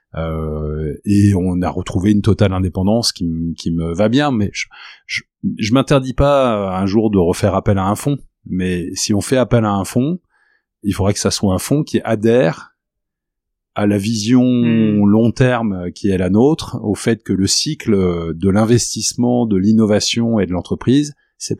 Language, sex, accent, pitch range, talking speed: French, male, French, 90-110 Hz, 185 wpm